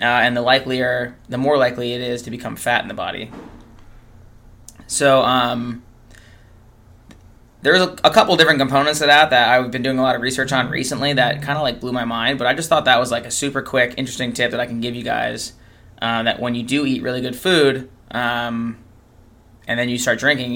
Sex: male